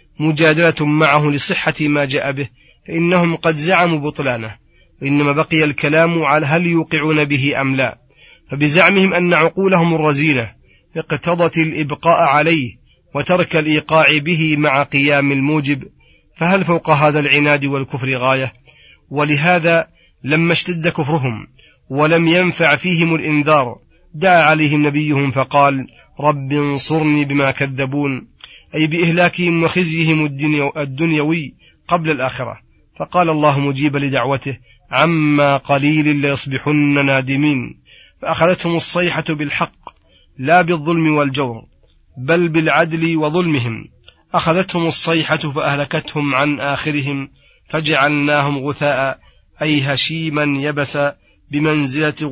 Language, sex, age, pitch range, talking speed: Arabic, male, 30-49, 140-165 Hz, 100 wpm